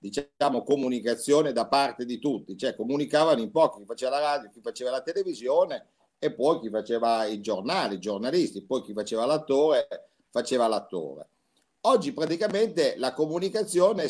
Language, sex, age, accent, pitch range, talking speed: Italian, male, 50-69, native, 130-185 Hz, 155 wpm